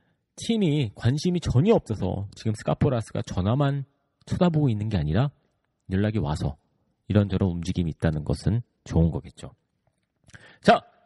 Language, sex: Korean, male